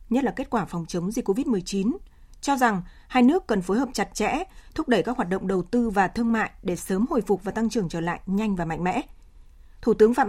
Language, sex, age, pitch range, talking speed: Vietnamese, female, 20-39, 195-245 Hz, 250 wpm